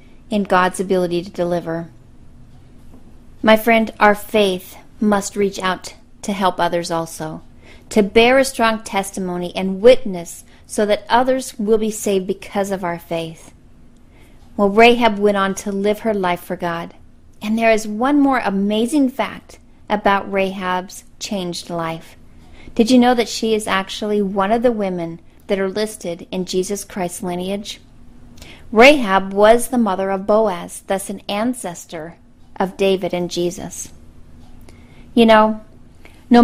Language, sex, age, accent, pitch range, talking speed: English, female, 40-59, American, 180-225 Hz, 145 wpm